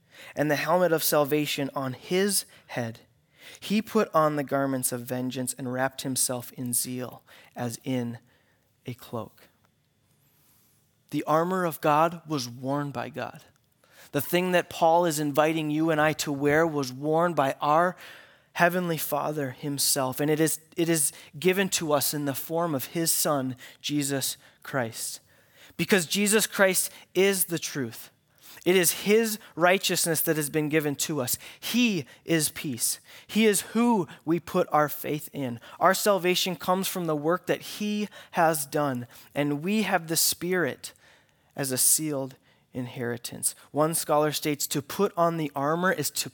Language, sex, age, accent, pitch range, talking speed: English, male, 20-39, American, 140-180 Hz, 160 wpm